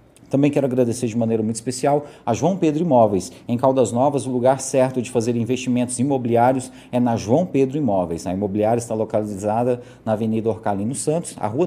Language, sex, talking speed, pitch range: Portuguese, male, 185 wpm, 125-155 Hz